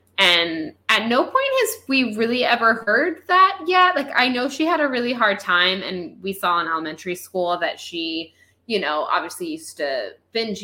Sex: female